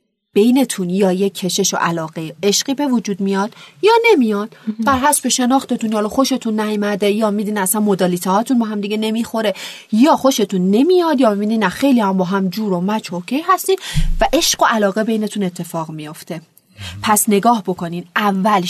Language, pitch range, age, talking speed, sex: Persian, 185-245 Hz, 30-49, 165 wpm, female